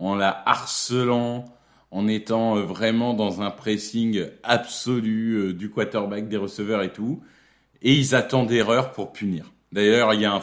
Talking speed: 155 wpm